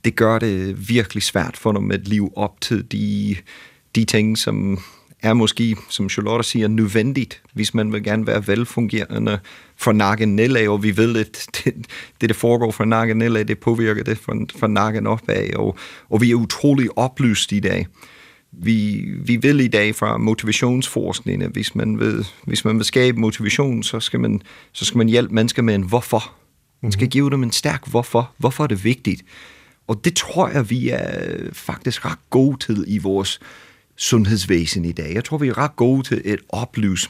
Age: 30-49